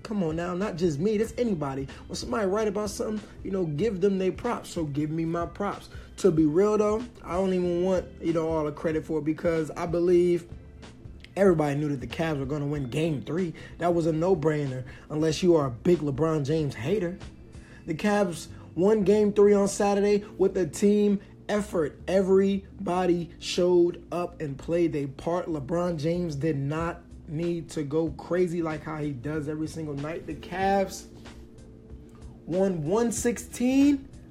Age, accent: 20-39, American